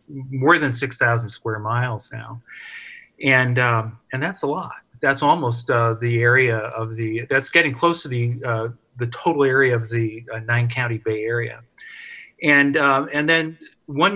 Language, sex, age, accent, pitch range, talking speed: English, male, 40-59, American, 115-135 Hz, 175 wpm